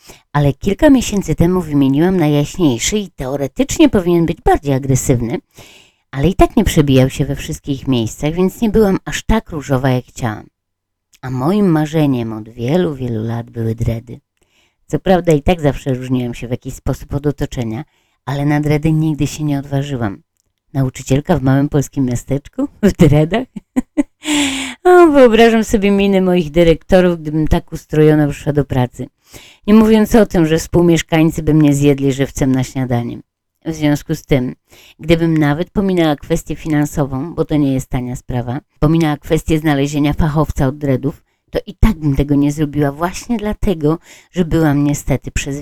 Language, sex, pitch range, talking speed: Polish, female, 130-170 Hz, 160 wpm